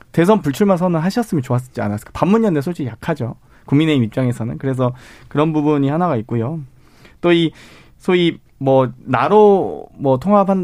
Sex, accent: male, native